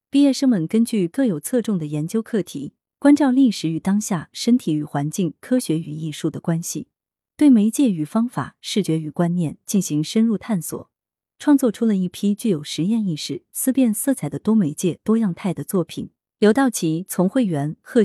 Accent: native